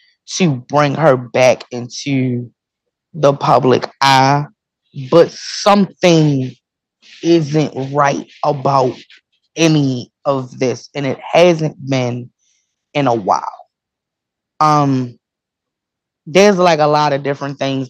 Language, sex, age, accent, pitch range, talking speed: English, female, 20-39, American, 130-160 Hz, 105 wpm